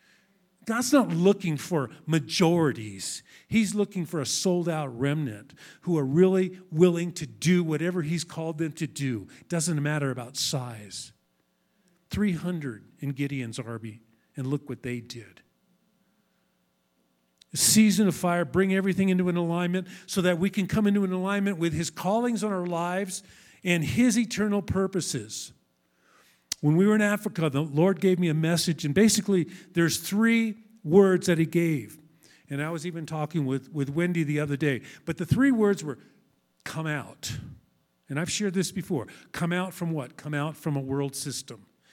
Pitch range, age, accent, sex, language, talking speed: 140-195 Hz, 50-69, American, male, English, 165 wpm